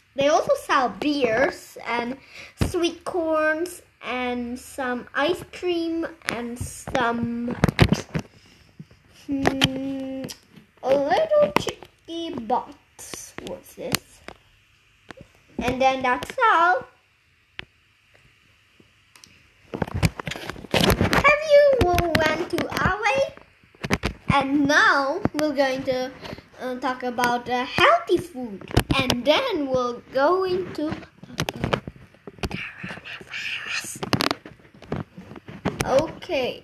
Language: English